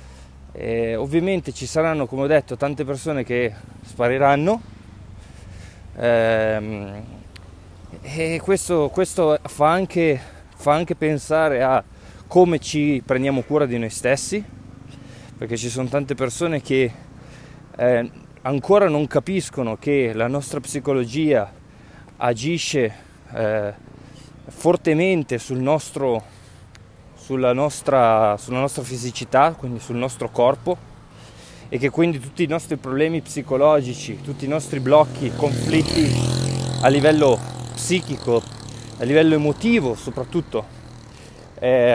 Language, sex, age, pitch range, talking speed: Italian, male, 20-39, 115-150 Hz, 100 wpm